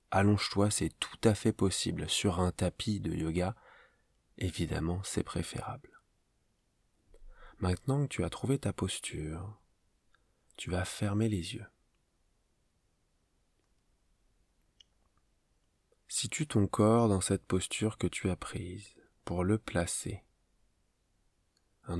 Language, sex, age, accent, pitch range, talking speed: French, male, 20-39, French, 85-110 Hz, 110 wpm